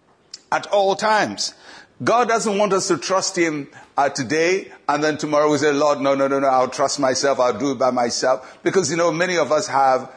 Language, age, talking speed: English, 60-79, 220 wpm